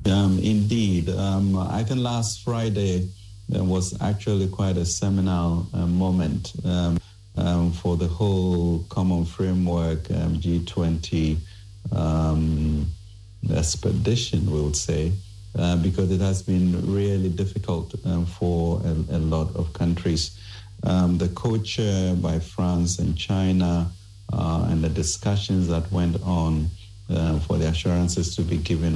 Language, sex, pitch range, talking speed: English, male, 85-100 Hz, 130 wpm